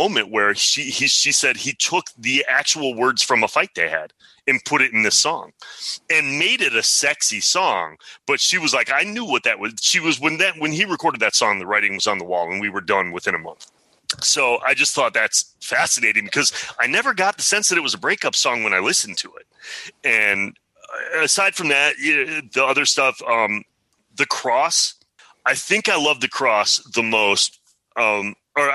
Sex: male